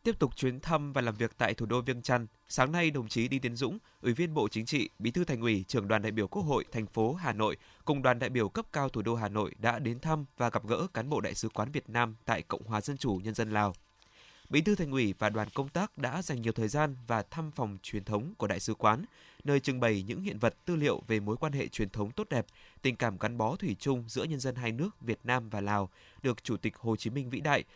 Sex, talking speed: male, 280 wpm